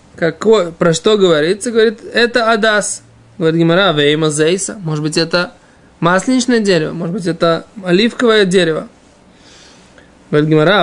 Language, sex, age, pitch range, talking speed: Russian, male, 20-39, 155-190 Hz, 115 wpm